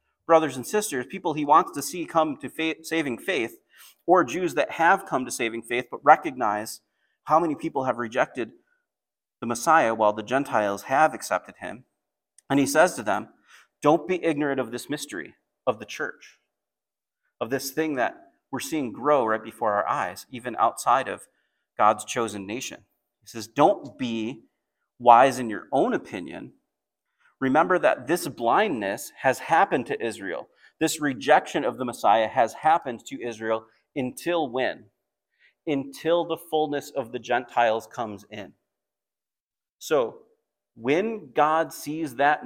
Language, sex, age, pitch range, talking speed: English, male, 30-49, 120-160 Hz, 150 wpm